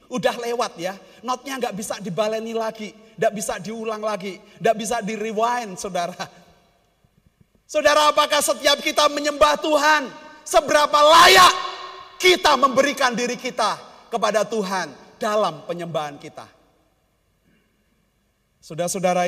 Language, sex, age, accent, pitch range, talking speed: Indonesian, male, 30-49, native, 210-275 Hz, 110 wpm